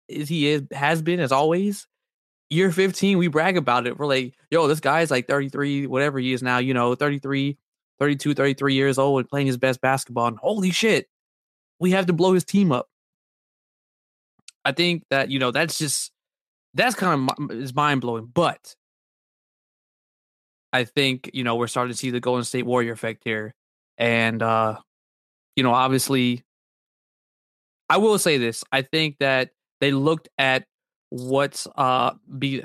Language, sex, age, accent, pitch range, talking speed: English, male, 20-39, American, 125-160 Hz, 170 wpm